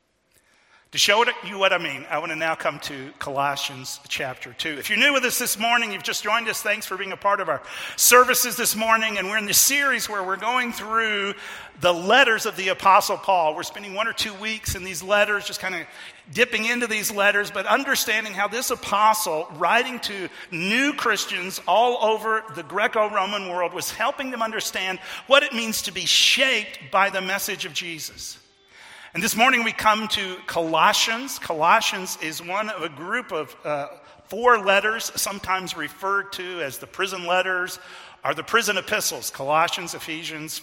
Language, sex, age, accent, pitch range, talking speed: English, male, 50-69, American, 165-225 Hz, 185 wpm